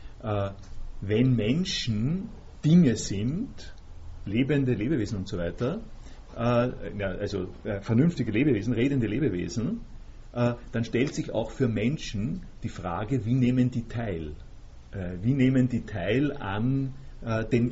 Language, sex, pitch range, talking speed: German, male, 105-130 Hz, 110 wpm